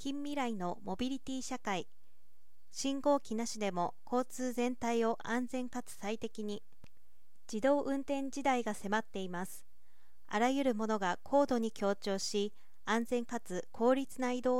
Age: 40-59